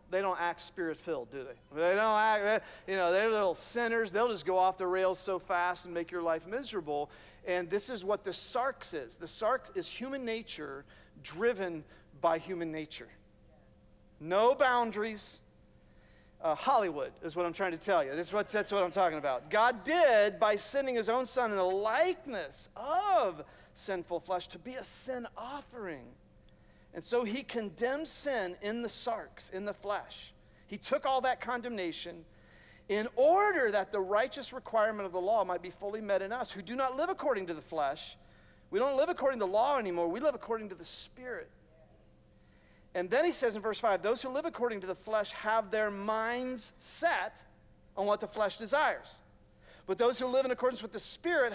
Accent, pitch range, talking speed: American, 180-245 Hz, 195 wpm